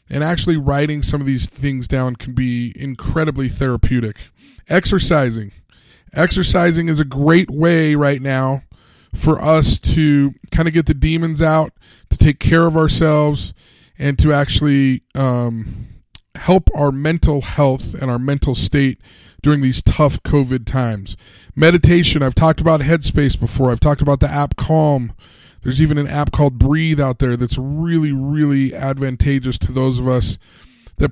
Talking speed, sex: 155 wpm, male